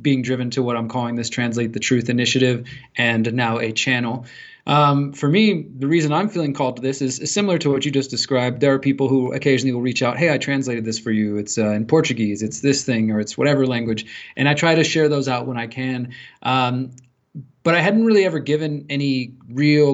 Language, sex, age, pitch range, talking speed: English, male, 20-39, 125-140 Hz, 225 wpm